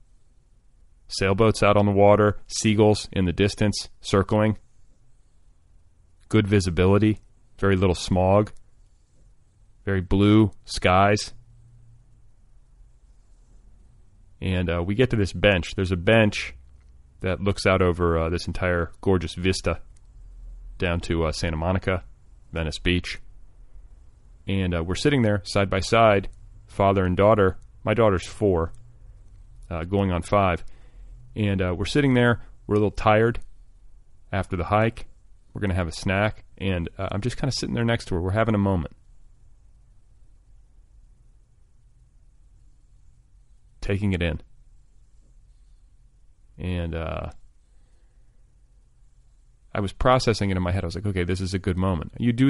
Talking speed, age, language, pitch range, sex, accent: 135 wpm, 30-49, English, 90-105 Hz, male, American